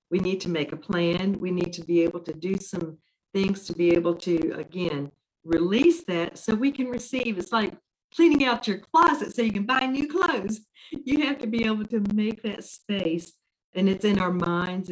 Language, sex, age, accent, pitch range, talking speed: English, female, 50-69, American, 170-210 Hz, 210 wpm